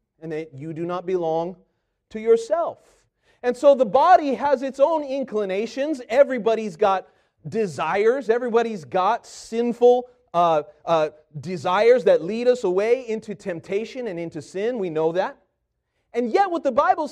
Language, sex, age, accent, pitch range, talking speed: English, male, 30-49, American, 165-265 Hz, 145 wpm